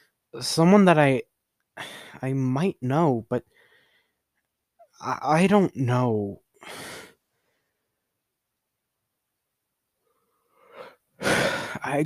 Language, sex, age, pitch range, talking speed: English, male, 20-39, 115-145 Hz, 60 wpm